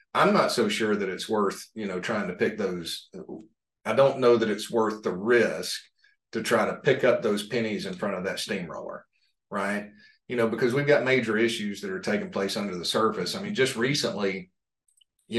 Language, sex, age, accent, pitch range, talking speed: English, male, 40-59, American, 105-125 Hz, 205 wpm